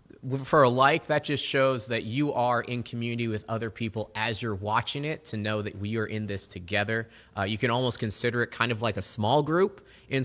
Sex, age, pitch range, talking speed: male, 20-39, 105-135 Hz, 230 wpm